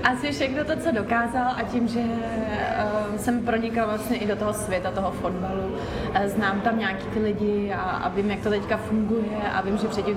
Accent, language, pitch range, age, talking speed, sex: native, Czech, 200-230 Hz, 20-39, 190 wpm, female